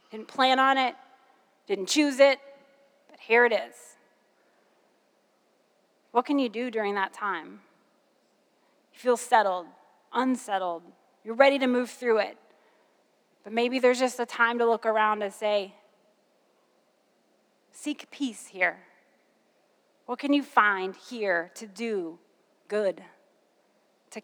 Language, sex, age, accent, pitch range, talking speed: English, female, 30-49, American, 200-250 Hz, 125 wpm